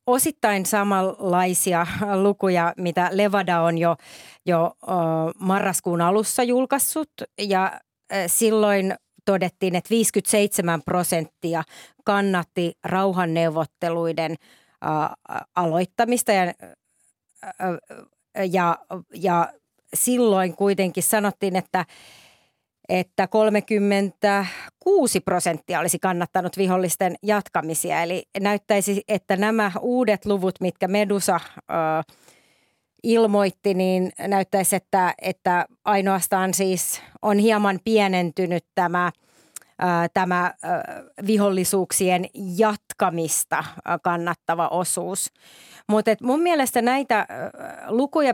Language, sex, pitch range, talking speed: Finnish, female, 175-215 Hz, 80 wpm